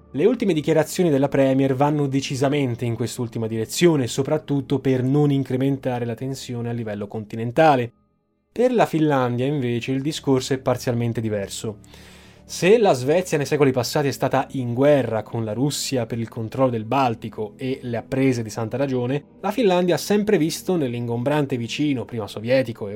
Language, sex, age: Italian, male, 20-39